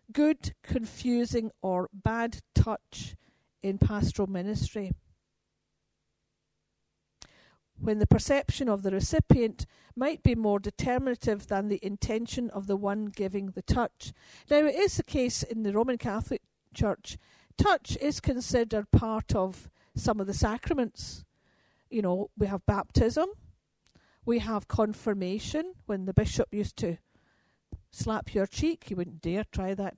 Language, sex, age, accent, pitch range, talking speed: Danish, female, 50-69, British, 195-245 Hz, 135 wpm